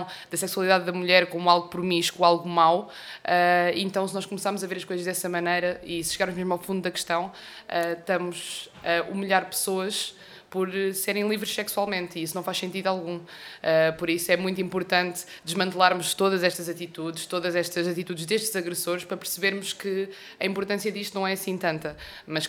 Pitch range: 170-190 Hz